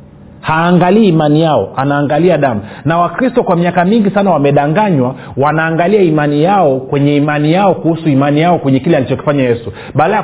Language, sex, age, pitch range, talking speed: Swahili, male, 40-59, 145-185 Hz, 150 wpm